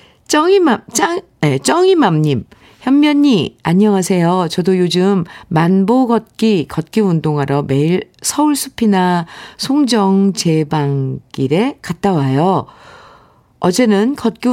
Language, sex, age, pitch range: Korean, female, 50-69, 160-245 Hz